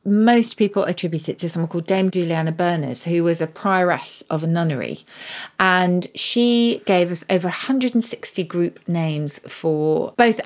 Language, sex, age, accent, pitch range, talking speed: English, female, 40-59, British, 160-195 Hz, 155 wpm